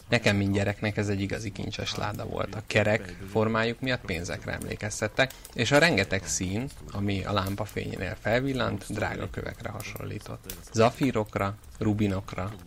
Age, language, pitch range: 30-49, Hungarian, 100-115 Hz